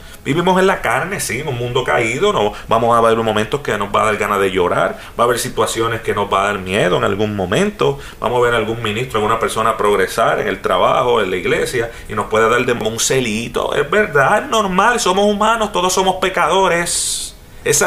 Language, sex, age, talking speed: Spanish, male, 30-49, 220 wpm